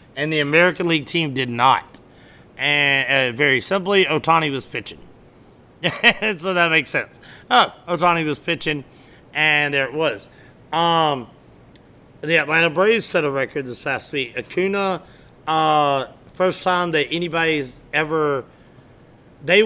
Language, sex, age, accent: English, male, 30-49, American